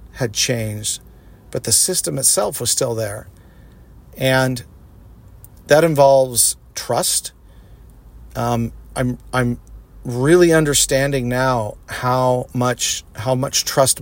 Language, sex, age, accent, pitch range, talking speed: English, male, 40-59, American, 115-135 Hz, 105 wpm